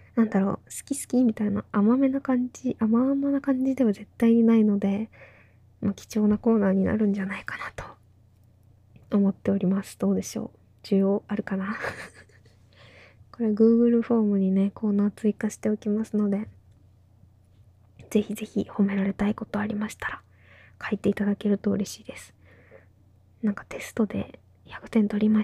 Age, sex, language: 20-39, female, Japanese